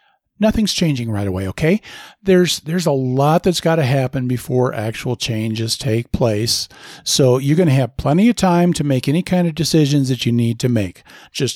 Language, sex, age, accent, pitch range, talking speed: English, male, 50-69, American, 125-170 Hz, 195 wpm